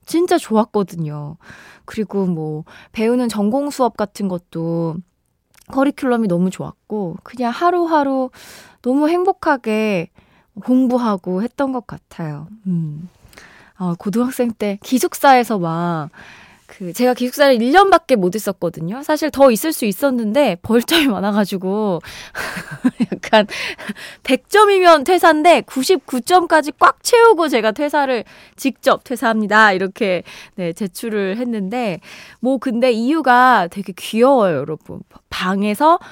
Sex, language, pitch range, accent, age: female, Korean, 185-270 Hz, native, 20-39